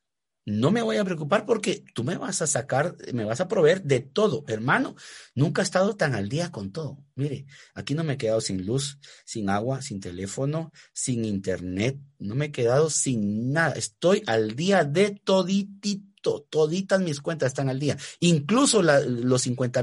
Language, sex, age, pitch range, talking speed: Spanish, male, 50-69, 110-160 Hz, 185 wpm